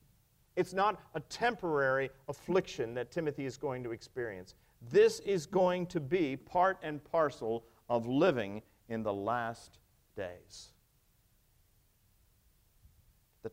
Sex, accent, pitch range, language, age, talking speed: male, American, 130-220 Hz, English, 50-69, 115 wpm